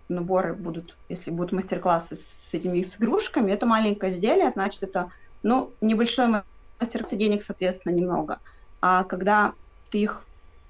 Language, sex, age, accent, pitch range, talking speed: Russian, female, 20-39, native, 180-215 Hz, 135 wpm